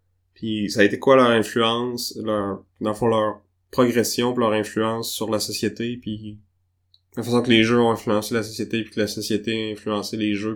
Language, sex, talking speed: French, male, 205 wpm